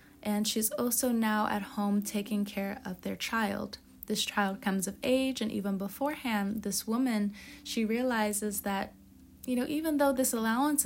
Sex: female